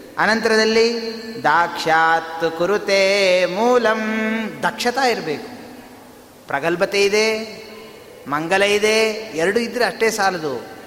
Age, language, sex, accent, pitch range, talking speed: 30-49, Kannada, male, native, 190-240 Hz, 75 wpm